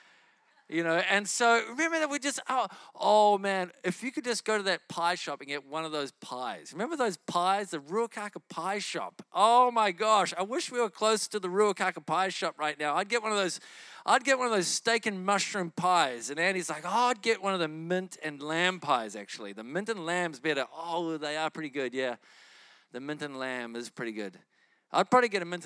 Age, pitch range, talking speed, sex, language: 40-59, 165-220 Hz, 230 wpm, male, English